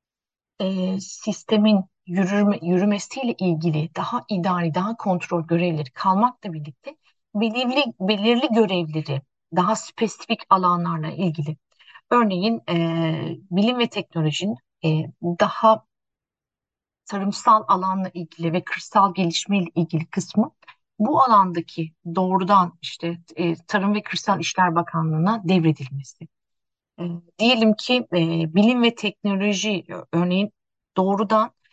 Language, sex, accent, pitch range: Turkish, female, native, 170-215 Hz